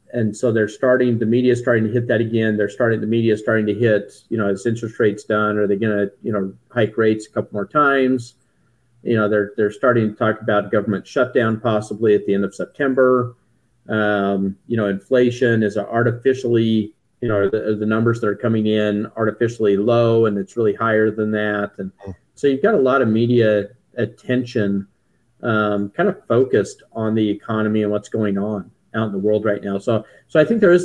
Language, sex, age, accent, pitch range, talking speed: English, male, 40-59, American, 105-120 Hz, 220 wpm